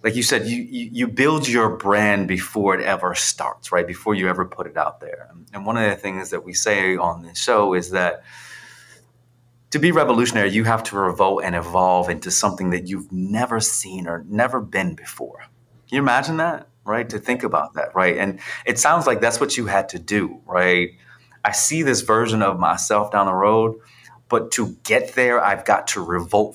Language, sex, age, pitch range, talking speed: English, male, 30-49, 95-120 Hz, 205 wpm